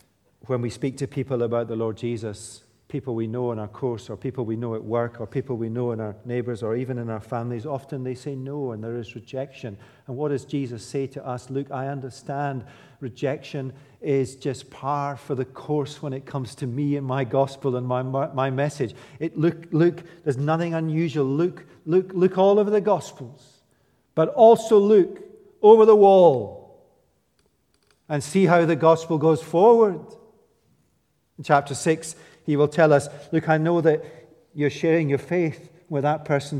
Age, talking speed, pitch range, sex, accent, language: 50-69, 185 wpm, 130-170 Hz, male, British, English